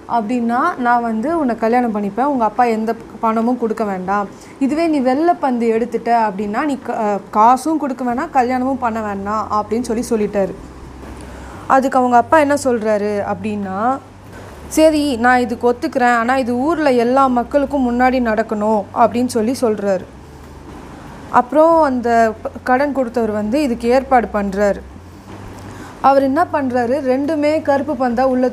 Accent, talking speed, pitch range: native, 130 wpm, 205-255 Hz